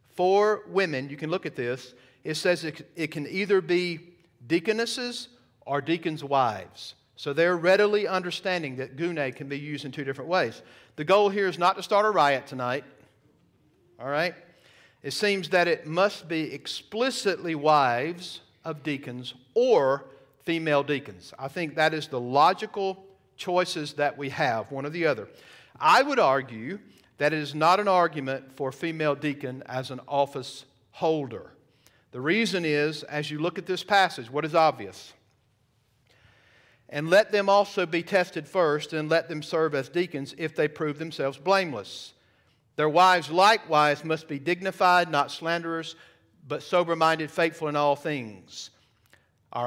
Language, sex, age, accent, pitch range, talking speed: English, male, 50-69, American, 135-180 Hz, 160 wpm